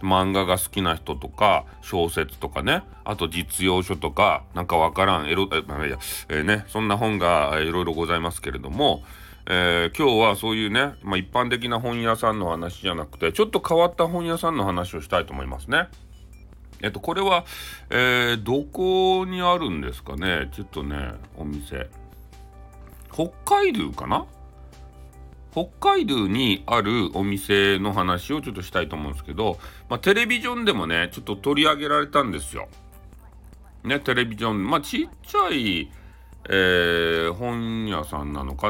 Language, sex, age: Japanese, male, 40-59